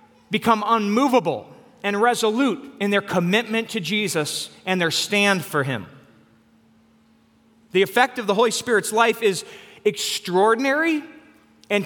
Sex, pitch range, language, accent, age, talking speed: male, 135-215 Hz, English, American, 40-59, 120 wpm